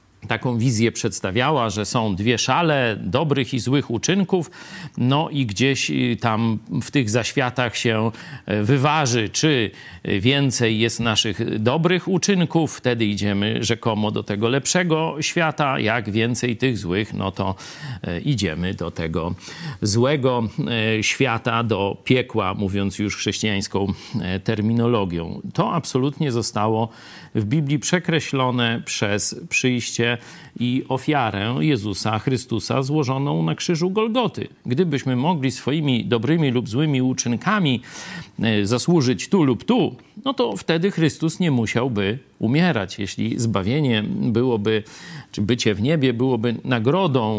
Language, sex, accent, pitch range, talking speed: Polish, male, native, 110-145 Hz, 120 wpm